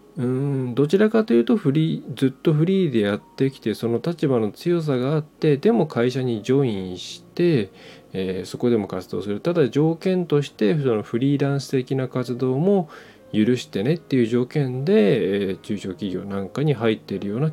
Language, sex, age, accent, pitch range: Japanese, male, 20-39, native, 100-150 Hz